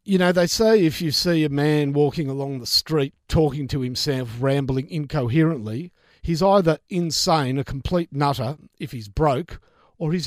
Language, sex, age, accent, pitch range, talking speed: English, male, 50-69, Australian, 135-175 Hz, 170 wpm